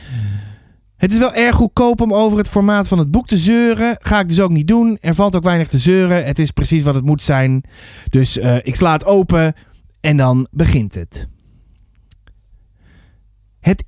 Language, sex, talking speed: Dutch, male, 190 wpm